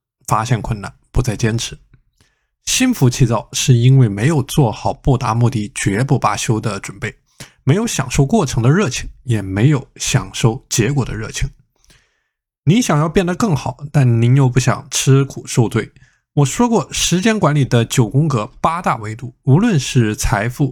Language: Chinese